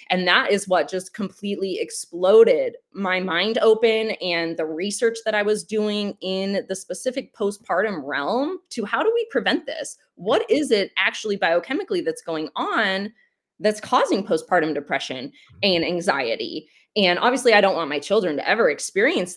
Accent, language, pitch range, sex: American, English, 180-240 Hz, female